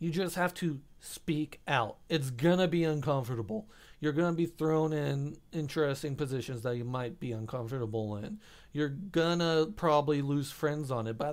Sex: male